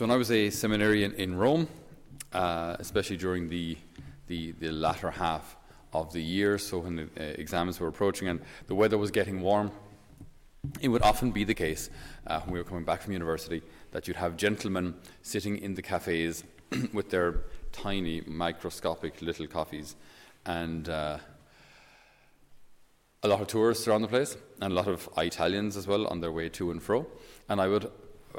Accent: Irish